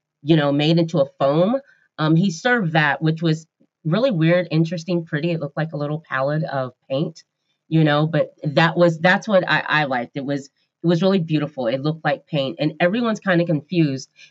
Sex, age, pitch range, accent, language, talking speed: female, 30-49, 150-180 Hz, American, English, 205 wpm